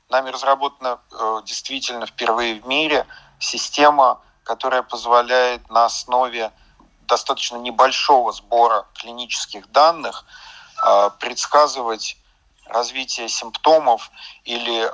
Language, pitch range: Russian, 110-130 Hz